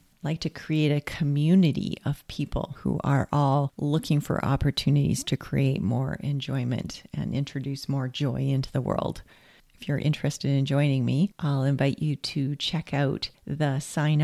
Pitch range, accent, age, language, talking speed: 135-175 Hz, American, 40-59, English, 160 wpm